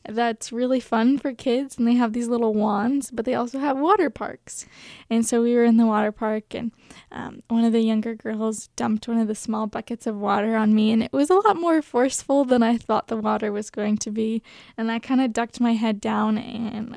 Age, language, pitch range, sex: 10-29, English, 220-250 Hz, female